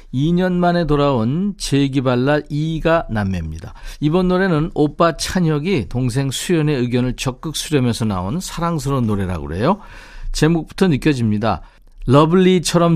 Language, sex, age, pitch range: Korean, male, 50-69, 110-165 Hz